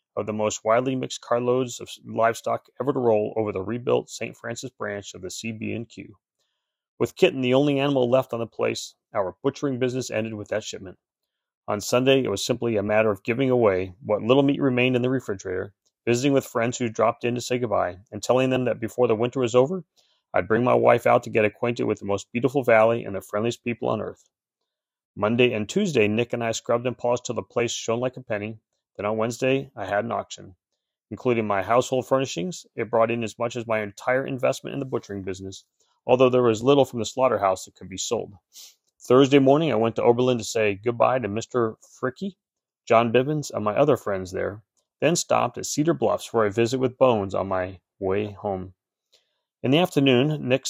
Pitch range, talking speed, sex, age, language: 105-130 Hz, 210 wpm, male, 30-49, English